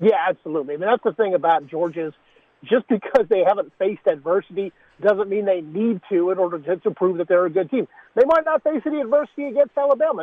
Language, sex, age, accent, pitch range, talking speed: English, male, 50-69, American, 180-240 Hz, 215 wpm